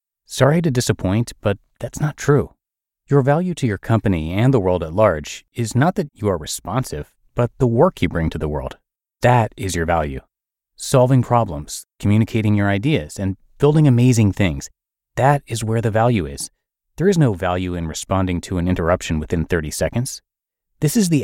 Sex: male